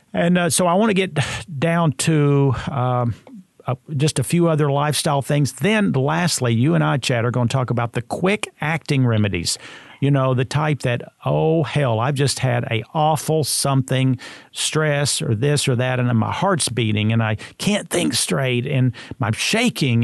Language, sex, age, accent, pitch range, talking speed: English, male, 50-69, American, 120-150 Hz, 190 wpm